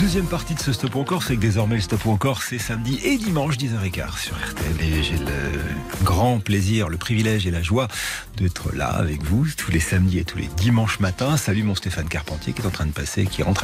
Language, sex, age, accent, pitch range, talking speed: French, male, 40-59, French, 95-130 Hz, 235 wpm